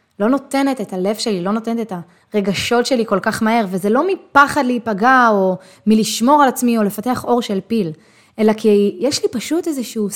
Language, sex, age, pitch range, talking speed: Hebrew, female, 20-39, 195-270 Hz, 190 wpm